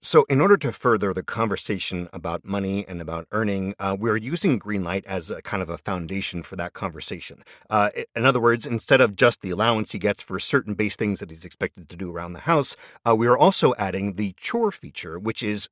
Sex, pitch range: male, 95-125 Hz